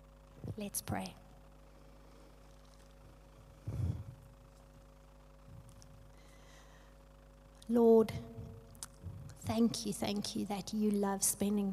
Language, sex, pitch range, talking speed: English, female, 200-230 Hz, 55 wpm